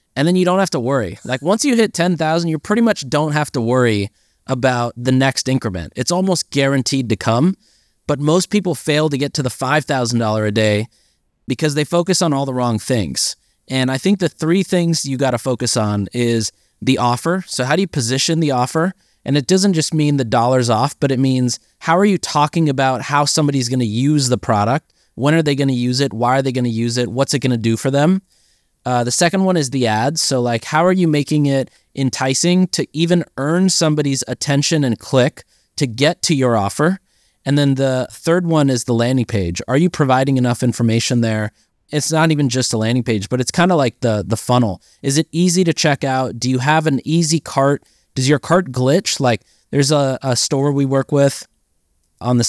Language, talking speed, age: English, 225 wpm, 20-39